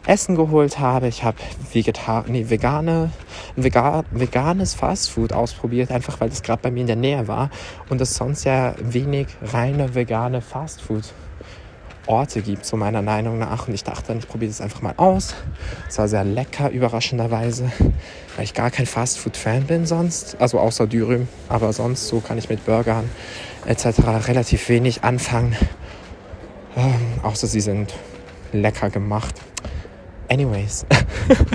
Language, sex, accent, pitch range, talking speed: German, male, German, 105-125 Hz, 140 wpm